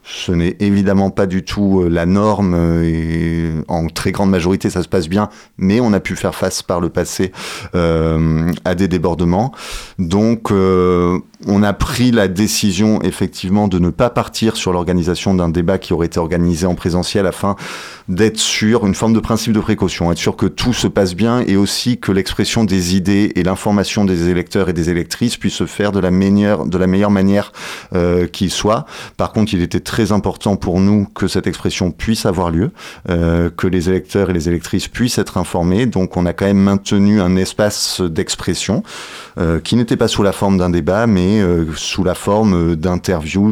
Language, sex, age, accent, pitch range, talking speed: French, male, 30-49, French, 90-105 Hz, 195 wpm